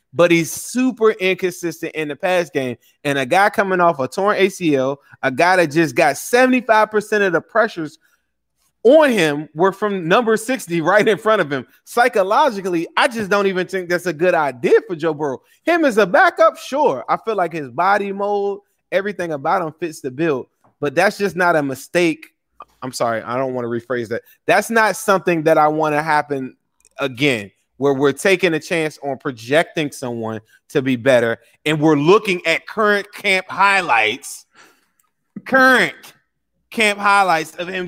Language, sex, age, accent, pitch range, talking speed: English, male, 20-39, American, 150-200 Hz, 175 wpm